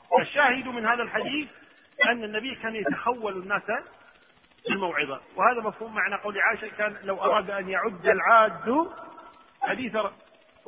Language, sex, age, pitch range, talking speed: Arabic, male, 40-59, 205-280 Hz, 130 wpm